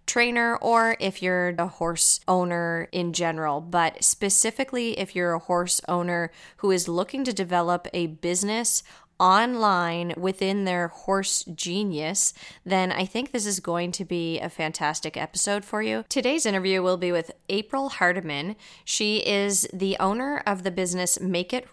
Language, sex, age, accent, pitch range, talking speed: English, female, 20-39, American, 175-210 Hz, 155 wpm